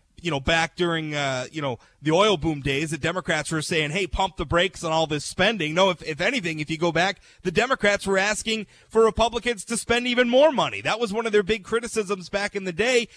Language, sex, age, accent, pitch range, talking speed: English, male, 40-59, American, 170-225 Hz, 240 wpm